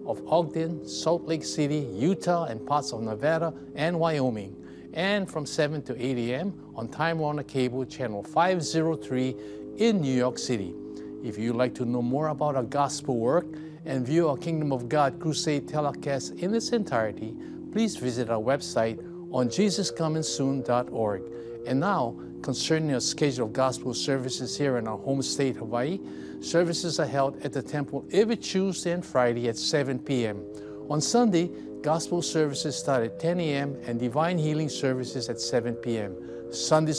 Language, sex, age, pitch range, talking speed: English, male, 50-69, 125-160 Hz, 160 wpm